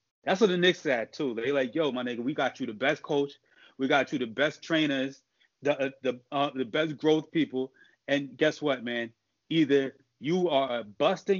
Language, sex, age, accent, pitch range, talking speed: English, male, 30-49, American, 135-185 Hz, 215 wpm